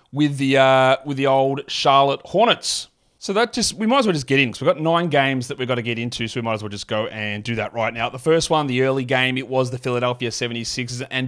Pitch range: 120-145 Hz